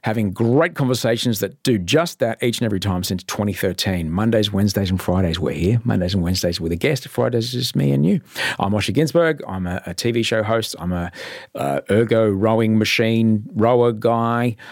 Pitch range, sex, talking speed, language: 95-125 Hz, male, 195 wpm, English